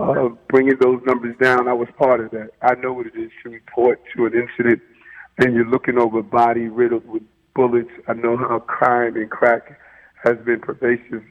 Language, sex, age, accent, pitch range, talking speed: English, male, 50-69, American, 115-130 Hz, 200 wpm